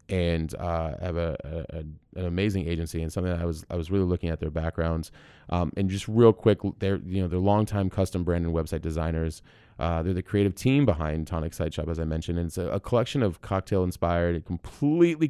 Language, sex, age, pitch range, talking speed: English, male, 30-49, 80-100 Hz, 205 wpm